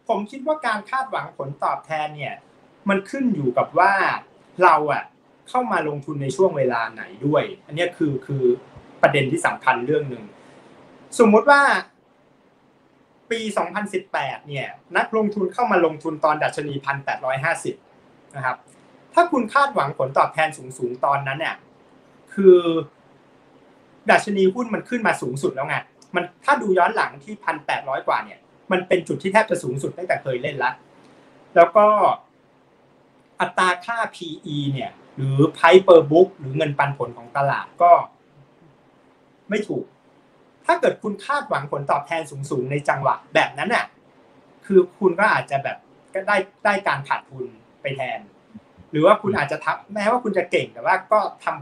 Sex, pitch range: male, 145-215 Hz